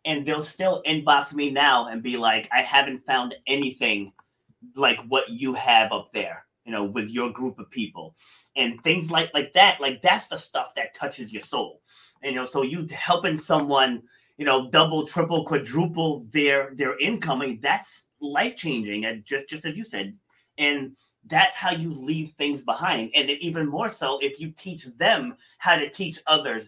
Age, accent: 30-49, American